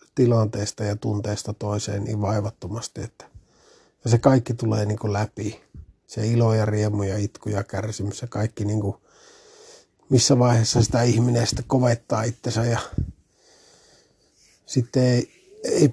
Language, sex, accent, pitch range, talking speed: Finnish, male, native, 105-120 Hz, 125 wpm